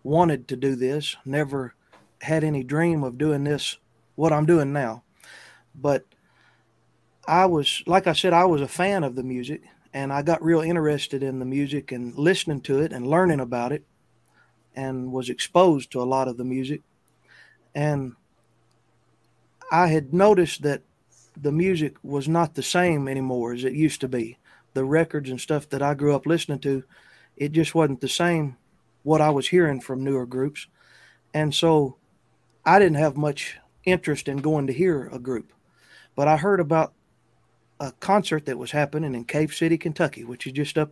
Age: 30-49